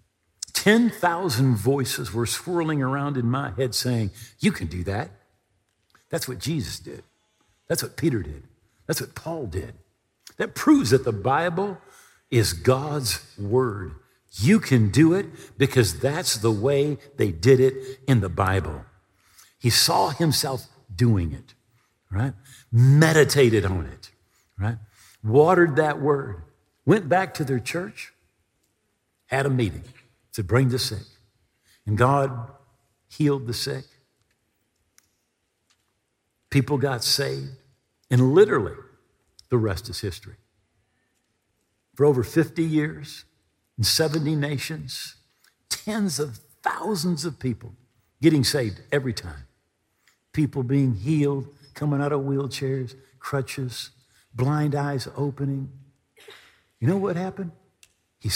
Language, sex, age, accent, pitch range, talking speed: English, male, 50-69, American, 110-145 Hz, 120 wpm